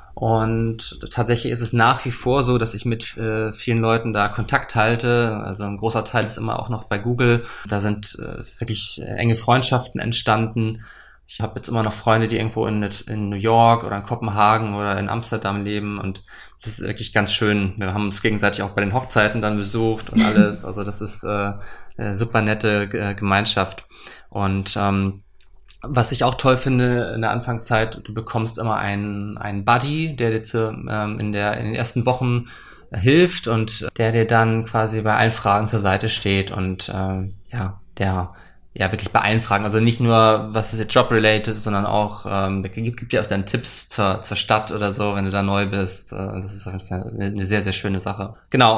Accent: German